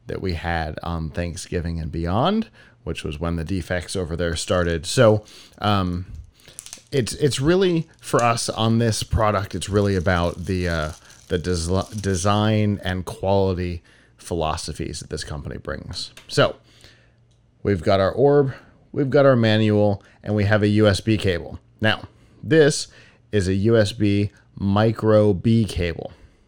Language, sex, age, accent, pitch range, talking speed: English, male, 30-49, American, 90-115 Hz, 145 wpm